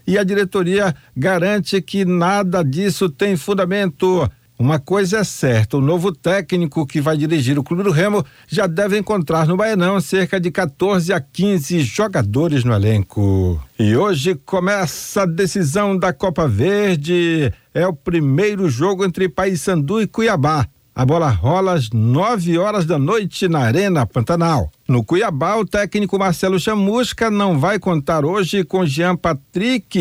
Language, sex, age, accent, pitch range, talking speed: Portuguese, male, 60-79, Brazilian, 155-195 Hz, 155 wpm